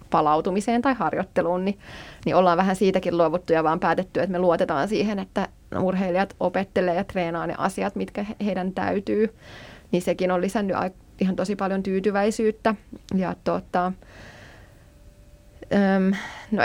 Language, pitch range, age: Finnish, 180-205 Hz, 20-39